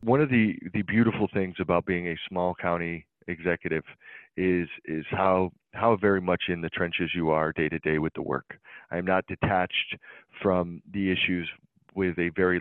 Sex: male